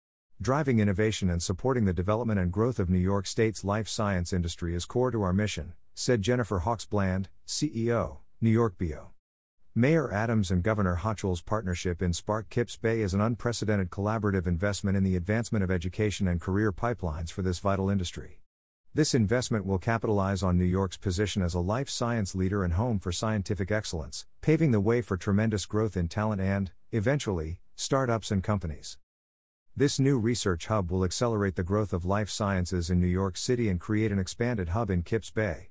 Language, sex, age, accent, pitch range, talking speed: English, male, 50-69, American, 90-115 Hz, 180 wpm